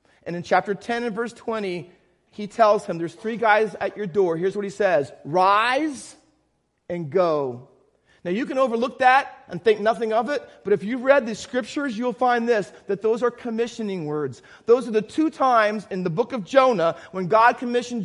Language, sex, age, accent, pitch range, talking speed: English, male, 40-59, American, 190-250 Hz, 200 wpm